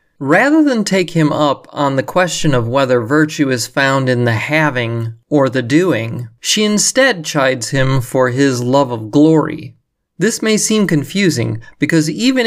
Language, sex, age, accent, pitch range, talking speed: English, male, 30-49, American, 125-160 Hz, 165 wpm